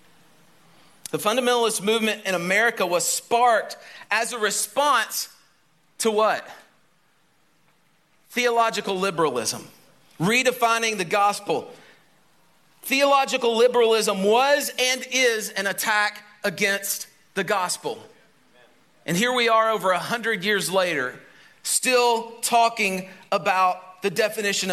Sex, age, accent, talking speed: male, 40-59, American, 100 wpm